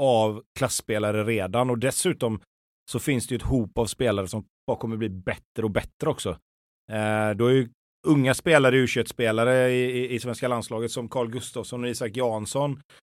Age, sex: 30-49, male